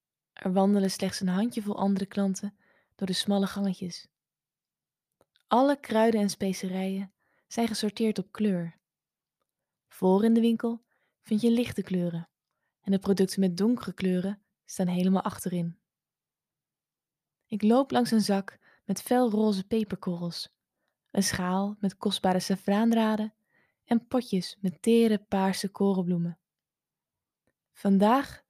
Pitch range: 185-215 Hz